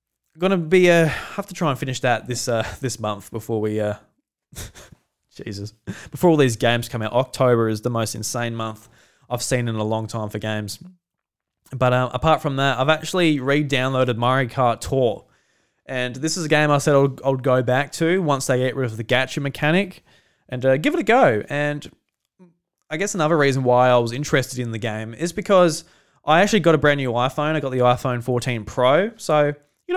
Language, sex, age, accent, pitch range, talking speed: English, male, 20-39, Australian, 120-165 Hz, 210 wpm